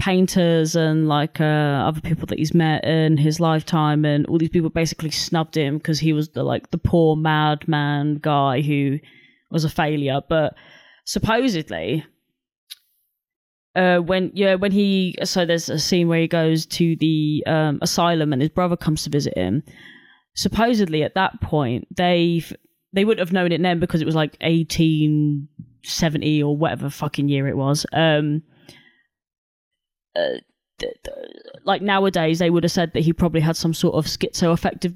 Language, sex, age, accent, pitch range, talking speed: English, female, 20-39, British, 150-175 Hz, 165 wpm